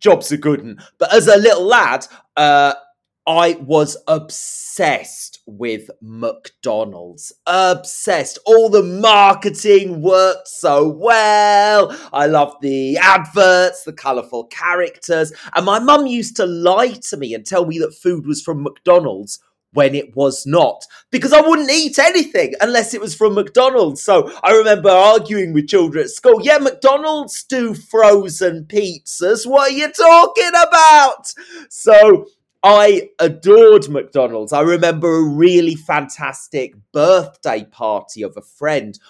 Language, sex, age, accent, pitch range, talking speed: English, male, 30-49, British, 145-225 Hz, 140 wpm